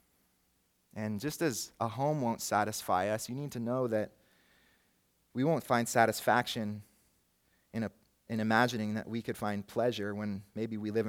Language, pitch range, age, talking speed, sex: English, 105-120 Hz, 30-49, 155 wpm, male